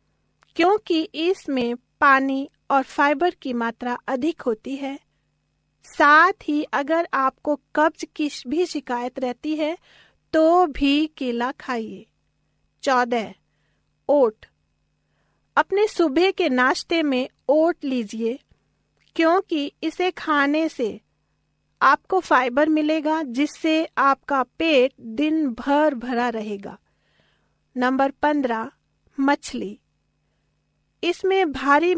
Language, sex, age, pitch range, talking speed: Hindi, female, 40-59, 260-320 Hz, 100 wpm